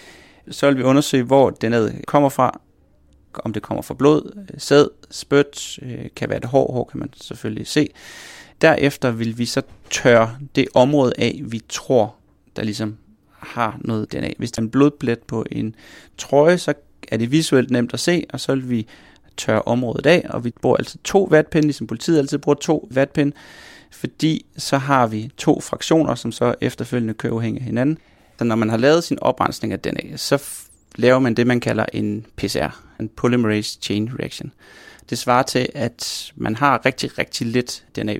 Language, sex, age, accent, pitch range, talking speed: Danish, male, 30-49, native, 110-140 Hz, 180 wpm